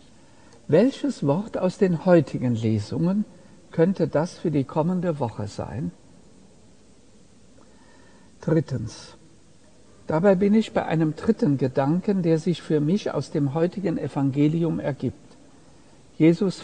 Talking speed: 110 wpm